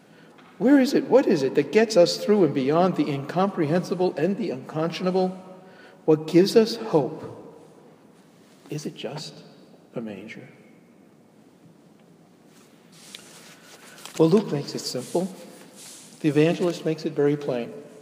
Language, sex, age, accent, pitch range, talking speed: English, male, 50-69, American, 130-155 Hz, 125 wpm